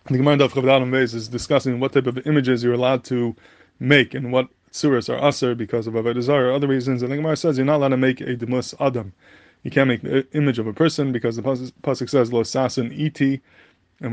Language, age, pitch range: English, 20-39, 120-140 Hz